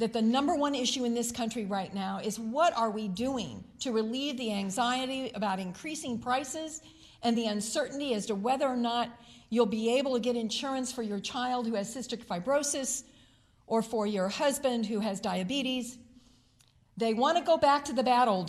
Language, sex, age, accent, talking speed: English, female, 50-69, American, 190 wpm